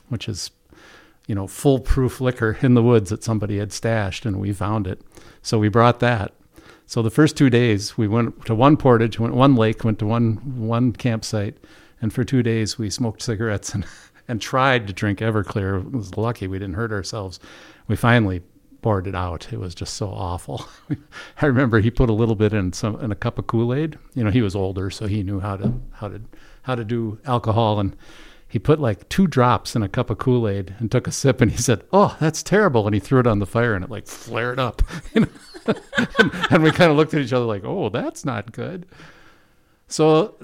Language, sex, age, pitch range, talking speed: English, male, 50-69, 105-130 Hz, 220 wpm